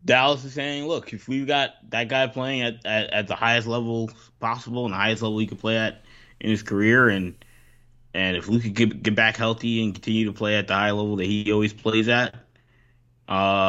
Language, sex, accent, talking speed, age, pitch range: English, male, American, 225 wpm, 20-39, 100-120 Hz